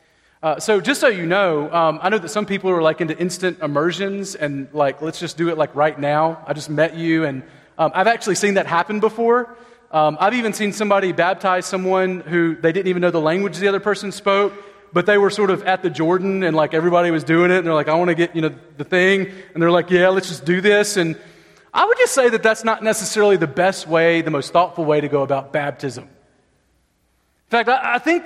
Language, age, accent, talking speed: English, 30-49, American, 240 wpm